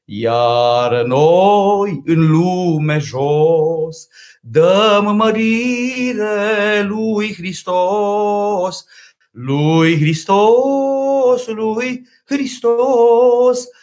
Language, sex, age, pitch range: Romanian, male, 40-59, 170-240 Hz